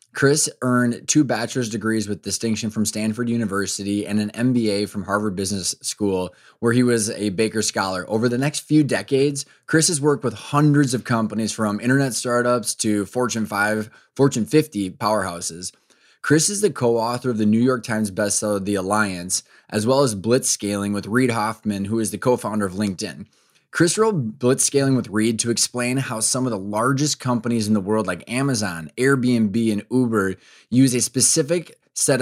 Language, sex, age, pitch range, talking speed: English, male, 20-39, 105-130 Hz, 175 wpm